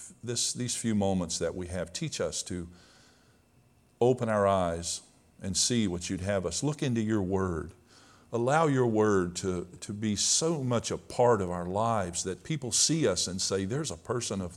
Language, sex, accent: English, male, American